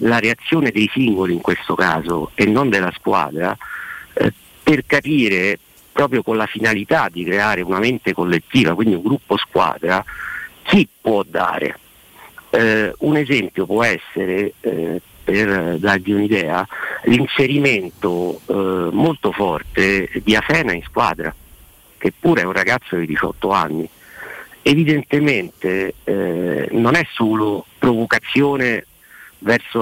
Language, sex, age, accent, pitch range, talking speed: Italian, male, 50-69, native, 95-125 Hz, 125 wpm